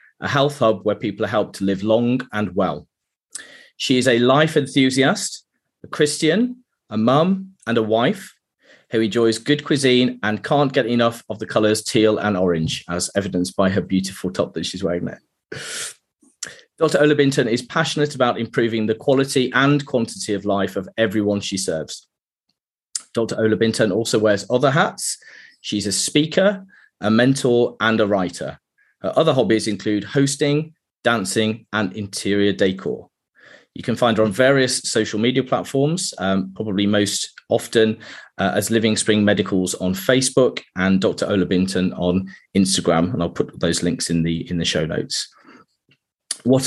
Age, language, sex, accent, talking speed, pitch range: 30-49, English, male, British, 160 wpm, 100-135 Hz